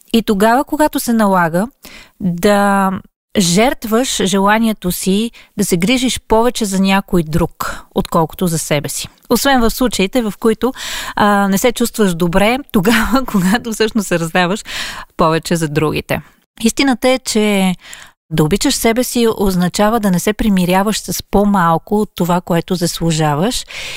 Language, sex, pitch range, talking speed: Bulgarian, female, 185-230 Hz, 140 wpm